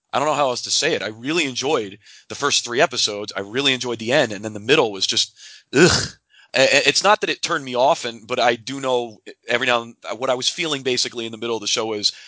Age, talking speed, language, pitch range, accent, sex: 30-49, 270 wpm, English, 105-135 Hz, American, male